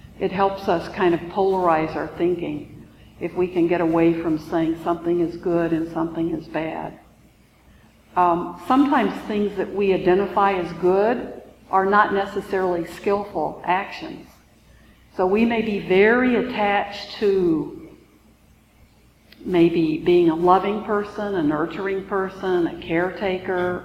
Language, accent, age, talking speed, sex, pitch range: English, American, 60-79, 130 wpm, female, 170-195 Hz